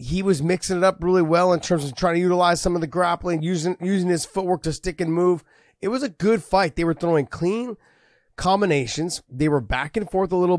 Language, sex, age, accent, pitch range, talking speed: English, male, 30-49, American, 140-175 Hz, 240 wpm